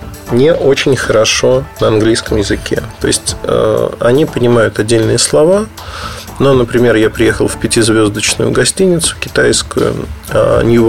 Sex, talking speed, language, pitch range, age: male, 125 wpm, Russian, 110-135 Hz, 20-39